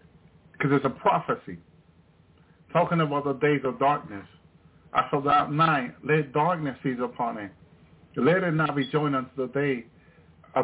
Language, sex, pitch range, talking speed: English, male, 130-155 Hz, 150 wpm